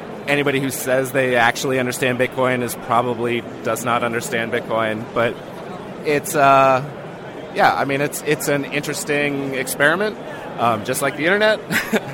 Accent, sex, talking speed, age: American, male, 145 wpm, 30-49